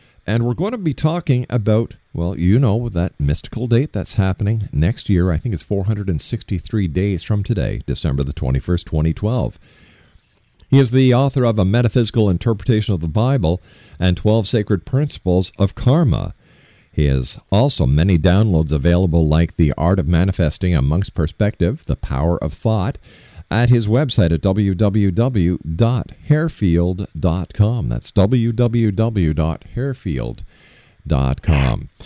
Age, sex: 50-69, male